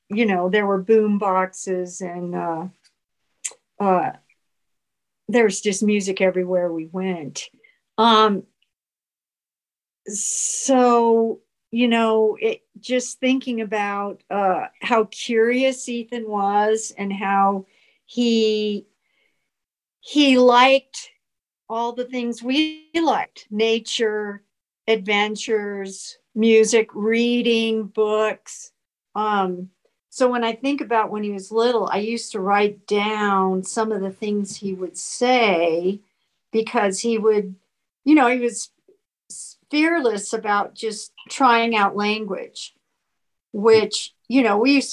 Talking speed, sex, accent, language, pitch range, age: 110 wpm, female, American, English, 195-240 Hz, 60-79